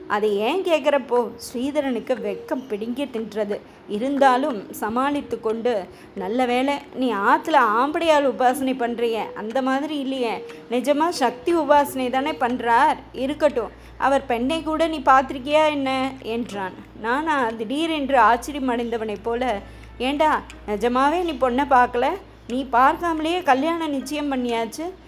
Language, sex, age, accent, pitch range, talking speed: Tamil, female, 20-39, native, 225-280 Hz, 115 wpm